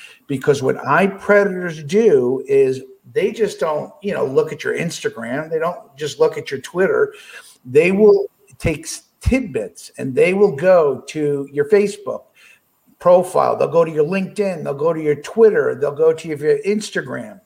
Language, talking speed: English, 165 wpm